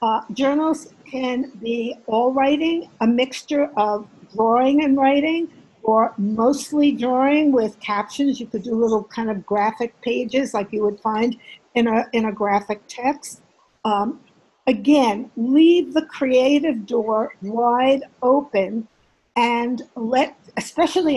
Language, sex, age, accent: English, female, 60-79, American